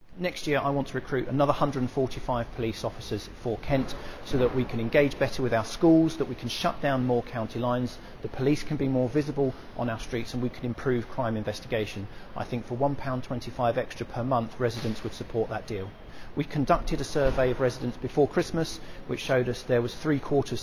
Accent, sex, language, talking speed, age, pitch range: British, male, English, 205 wpm, 40-59, 125-210 Hz